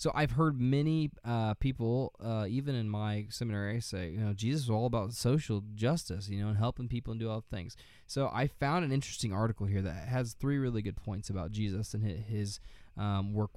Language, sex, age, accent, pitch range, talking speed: English, male, 20-39, American, 105-140 Hz, 210 wpm